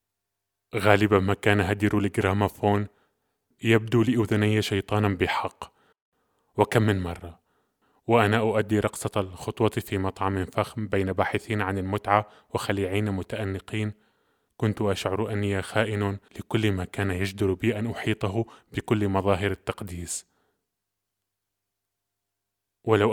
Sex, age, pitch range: male, 20-39, 100-110 Hz